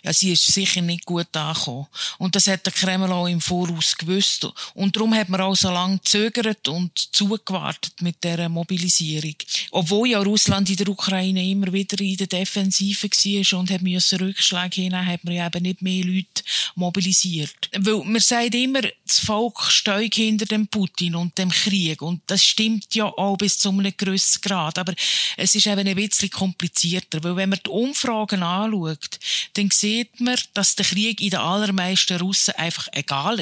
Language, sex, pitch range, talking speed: German, female, 175-205 Hz, 185 wpm